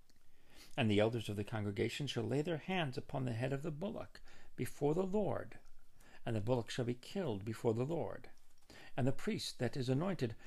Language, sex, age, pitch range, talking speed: English, male, 50-69, 110-150 Hz, 195 wpm